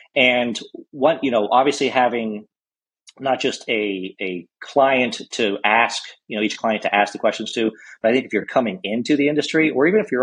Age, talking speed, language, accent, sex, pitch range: 40-59, 205 wpm, English, American, male, 105-125 Hz